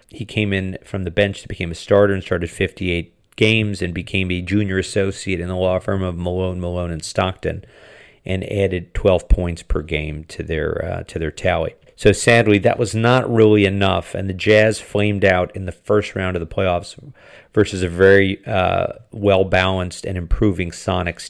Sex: male